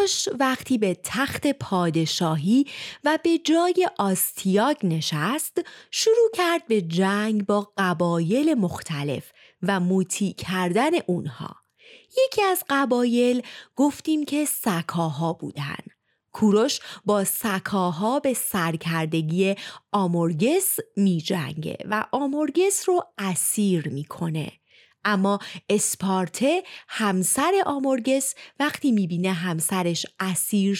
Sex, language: female, Persian